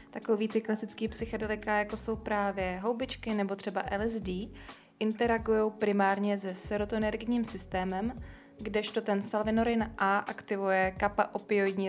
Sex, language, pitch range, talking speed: female, Czech, 195-215 Hz, 110 wpm